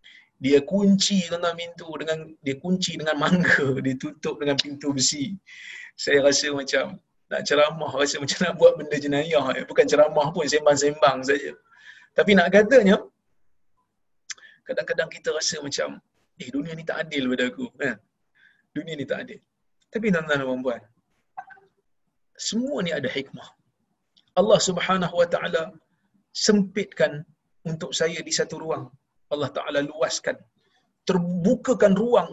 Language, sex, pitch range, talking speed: Malayalam, male, 145-195 Hz, 135 wpm